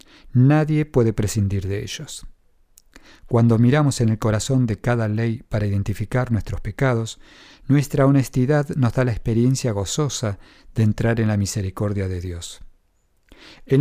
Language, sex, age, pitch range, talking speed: English, male, 50-69, 105-135 Hz, 140 wpm